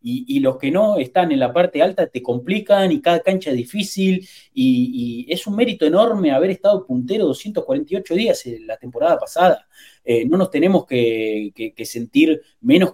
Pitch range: 125-195 Hz